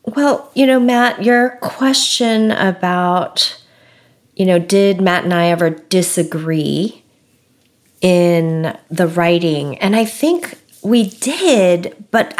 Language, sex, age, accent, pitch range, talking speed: English, female, 30-49, American, 175-220 Hz, 115 wpm